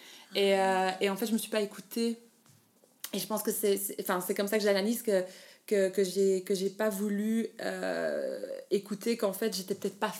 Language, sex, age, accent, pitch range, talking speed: French, female, 20-39, French, 190-225 Hz, 235 wpm